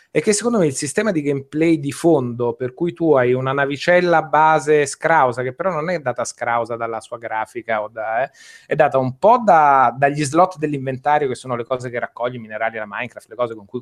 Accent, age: native, 20-39